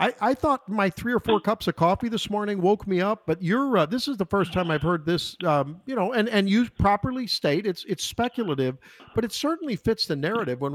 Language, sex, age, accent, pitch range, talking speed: English, male, 50-69, American, 150-210 Hz, 245 wpm